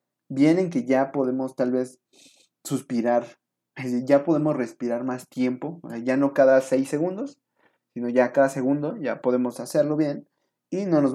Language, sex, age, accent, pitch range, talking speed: Spanish, male, 30-49, Mexican, 130-170 Hz, 160 wpm